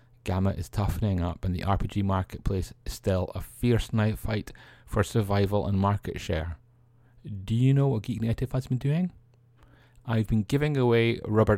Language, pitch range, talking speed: English, 95-120 Hz, 165 wpm